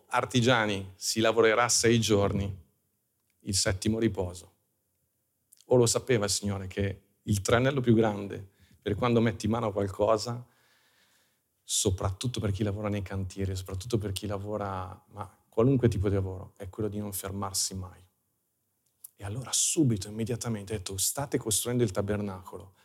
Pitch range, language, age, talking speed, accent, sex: 100-120 Hz, Italian, 40-59, 140 wpm, native, male